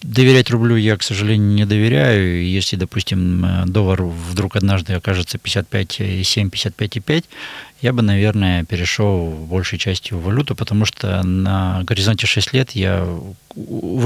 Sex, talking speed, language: male, 125 wpm, Russian